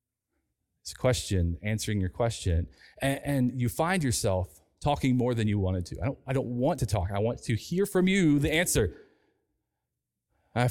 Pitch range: 100-140 Hz